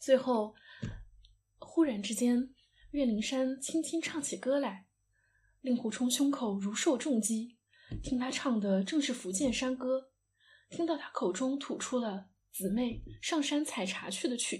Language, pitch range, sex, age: Chinese, 200-270 Hz, female, 10-29